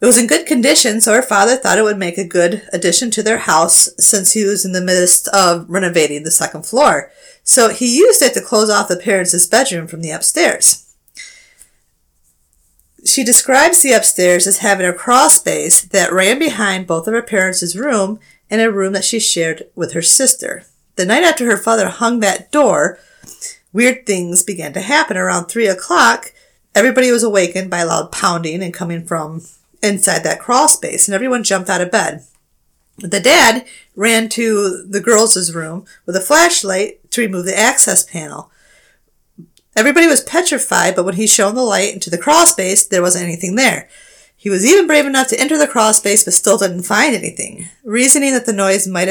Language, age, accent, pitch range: English, 30-49, American, 180-235 Hz